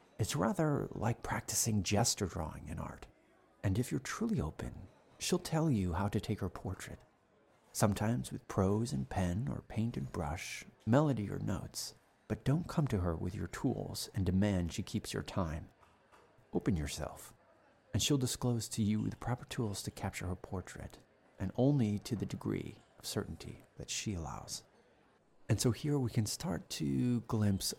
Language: English